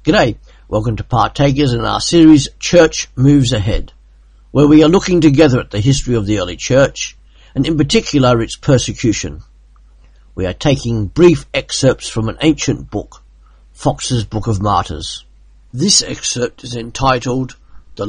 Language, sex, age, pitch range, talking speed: English, male, 50-69, 120-155 Hz, 150 wpm